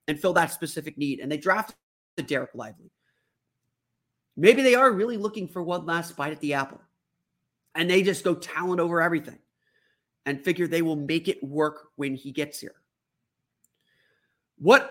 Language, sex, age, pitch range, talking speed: English, male, 30-49, 150-185 Hz, 170 wpm